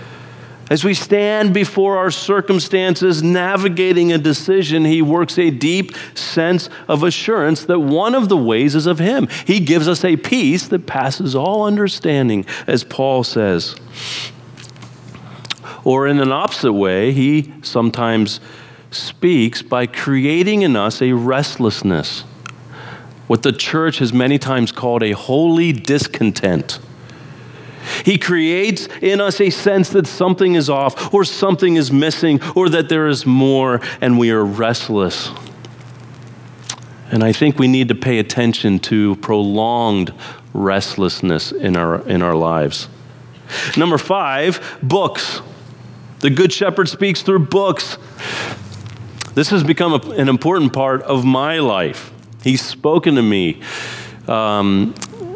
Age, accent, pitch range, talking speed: 40-59, American, 120-175 Hz, 135 wpm